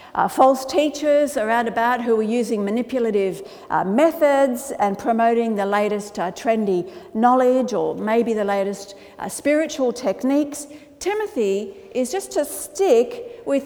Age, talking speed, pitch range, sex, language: 50-69, 140 wpm, 215-285 Hz, female, English